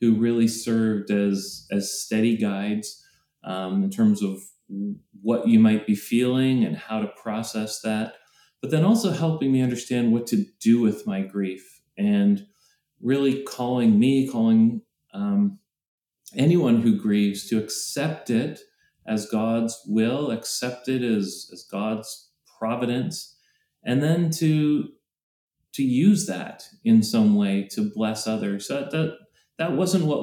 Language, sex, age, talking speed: English, male, 30-49, 145 wpm